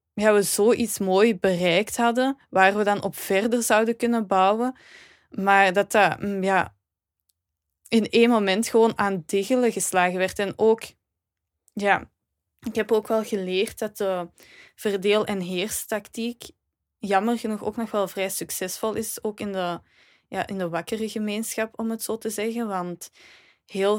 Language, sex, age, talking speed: Dutch, female, 20-39, 155 wpm